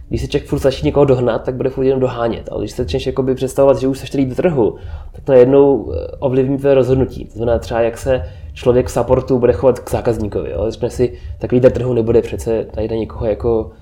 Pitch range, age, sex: 110-130 Hz, 20-39, male